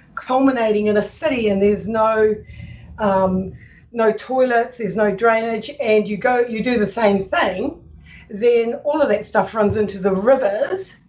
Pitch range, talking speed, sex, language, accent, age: 200-245 Hz, 160 wpm, female, English, Australian, 40-59